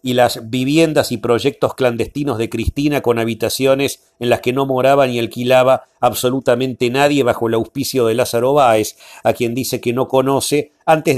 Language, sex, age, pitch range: Spanish, male, 40-59, 120-140 Hz